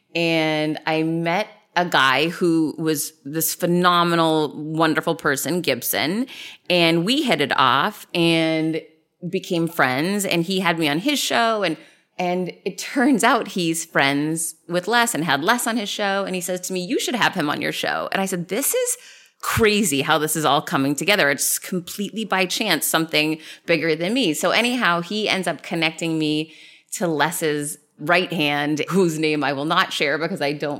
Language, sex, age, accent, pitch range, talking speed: English, female, 30-49, American, 150-195 Hz, 180 wpm